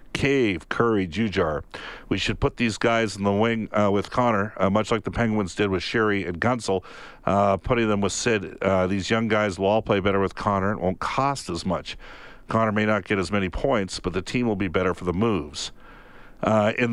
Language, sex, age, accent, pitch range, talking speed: English, male, 50-69, American, 95-120 Hz, 220 wpm